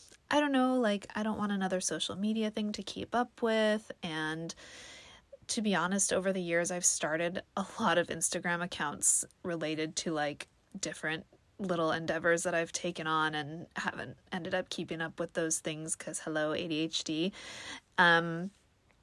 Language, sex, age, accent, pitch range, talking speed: English, female, 20-39, American, 165-215 Hz, 165 wpm